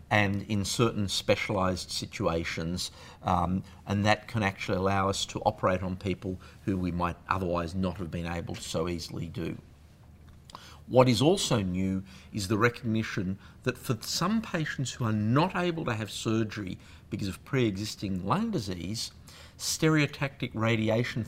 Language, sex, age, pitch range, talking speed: English, male, 50-69, 90-115 Hz, 150 wpm